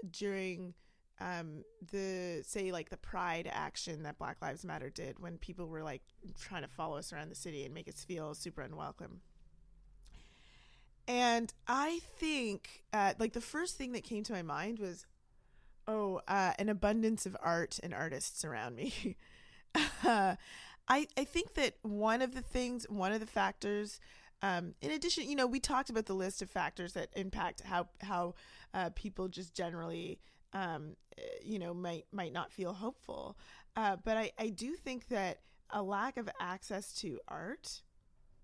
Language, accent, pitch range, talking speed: English, American, 175-220 Hz, 170 wpm